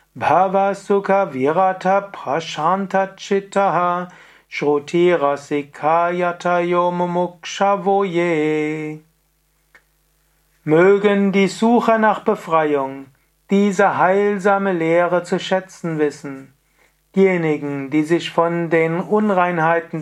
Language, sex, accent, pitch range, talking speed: German, male, German, 160-190 Hz, 65 wpm